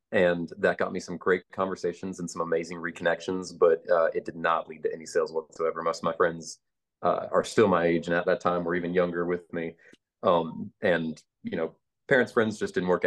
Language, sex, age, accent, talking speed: English, male, 30-49, American, 220 wpm